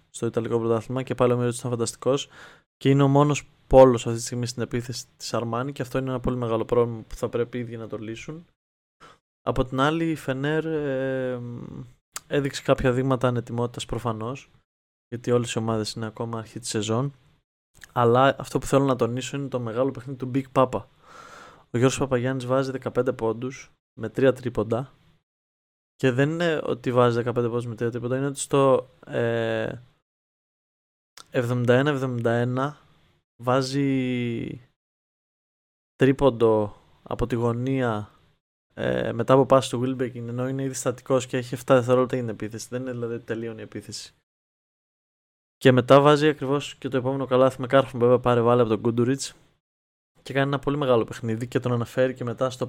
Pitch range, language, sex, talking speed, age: 120-135 Hz, Greek, male, 170 wpm, 20-39